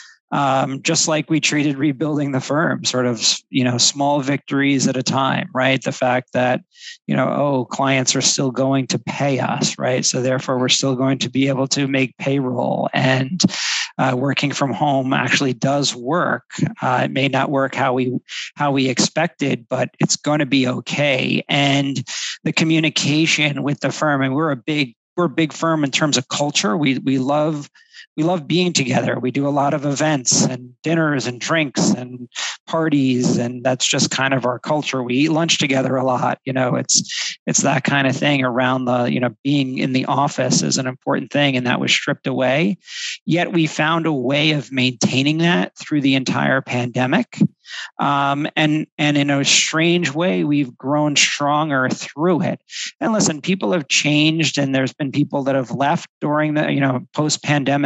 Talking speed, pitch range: 190 wpm, 130-150 Hz